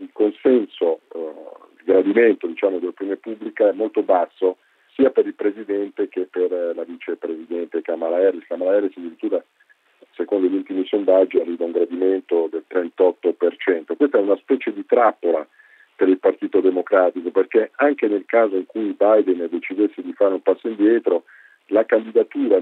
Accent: native